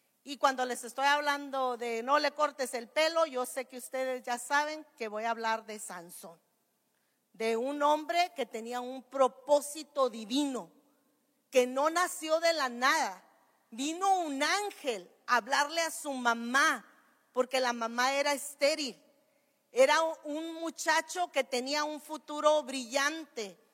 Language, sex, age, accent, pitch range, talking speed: Spanish, female, 40-59, American, 260-310 Hz, 145 wpm